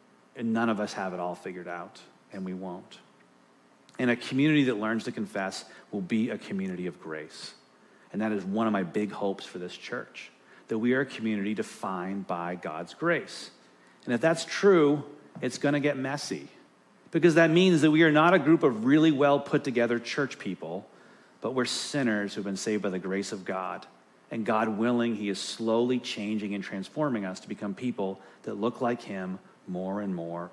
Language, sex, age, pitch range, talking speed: English, male, 40-59, 95-135 Hz, 195 wpm